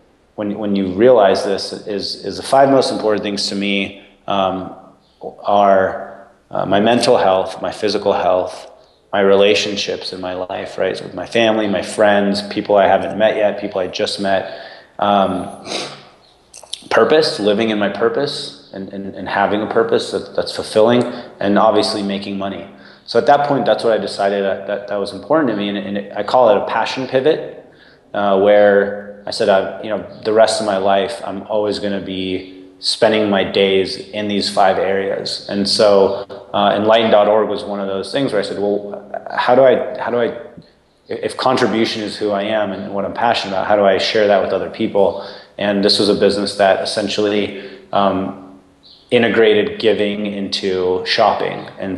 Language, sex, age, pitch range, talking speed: English, male, 30-49, 95-105 Hz, 185 wpm